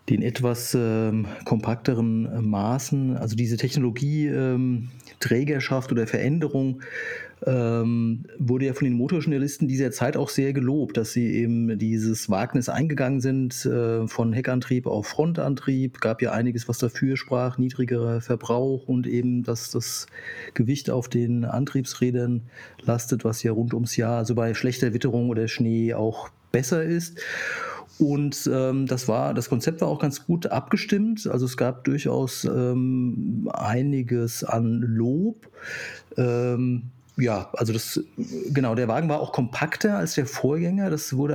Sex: male